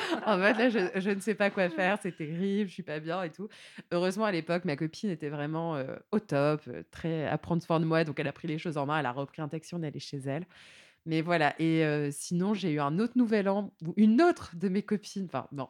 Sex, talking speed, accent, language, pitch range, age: female, 265 wpm, French, French, 165-250 Hz, 20-39